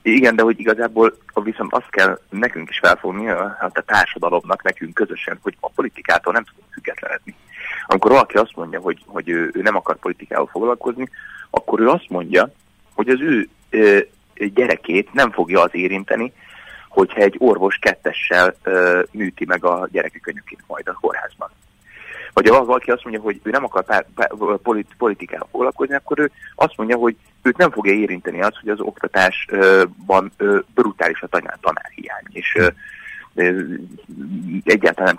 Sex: male